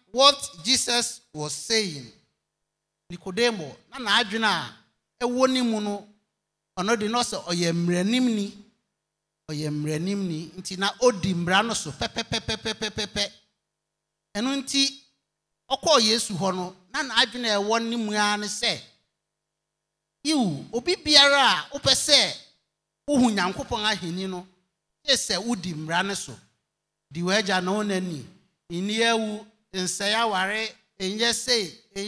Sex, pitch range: male, 180-245 Hz